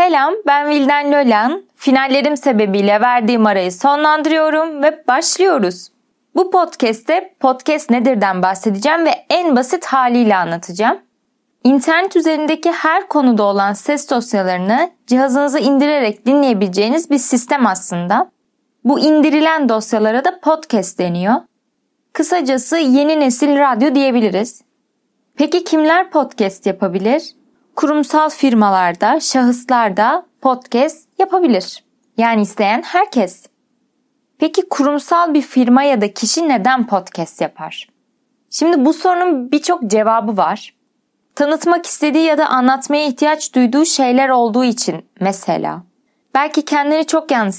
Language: Turkish